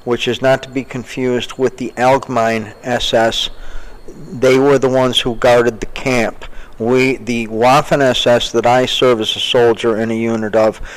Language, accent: English, American